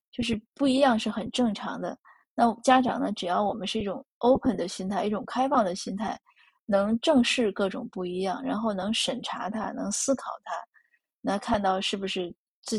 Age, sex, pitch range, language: 20-39, female, 195-245 Hz, Chinese